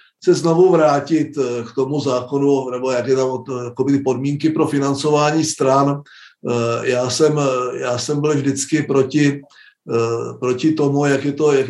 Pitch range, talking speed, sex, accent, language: 140-160 Hz, 145 wpm, male, native, Czech